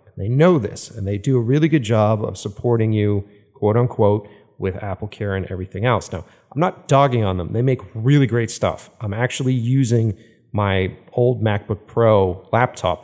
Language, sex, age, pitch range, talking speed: English, male, 40-59, 105-145 Hz, 180 wpm